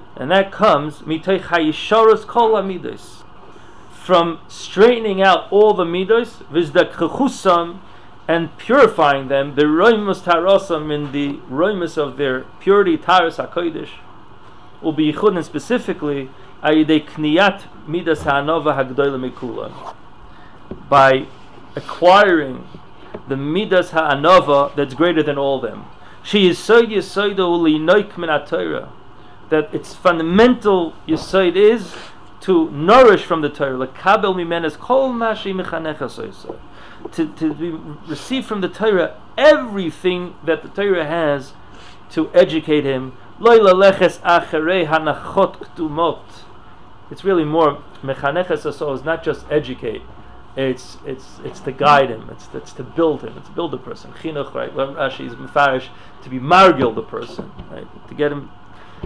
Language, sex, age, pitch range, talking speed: English, male, 40-59, 145-190 Hz, 115 wpm